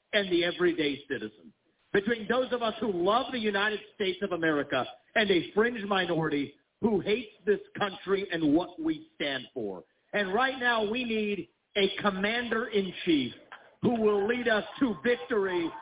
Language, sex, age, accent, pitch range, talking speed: English, male, 50-69, American, 195-255 Hz, 165 wpm